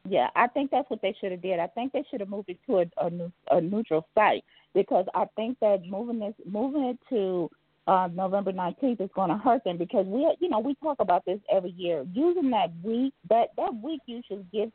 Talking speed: 230 wpm